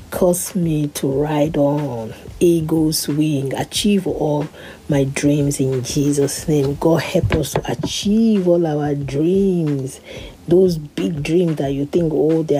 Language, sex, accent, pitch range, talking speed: English, female, Nigerian, 145-175 Hz, 145 wpm